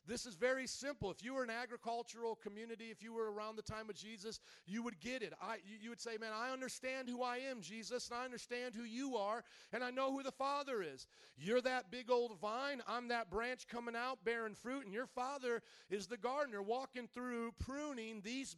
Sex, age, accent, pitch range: male, 40-59, American, 205-245 Hz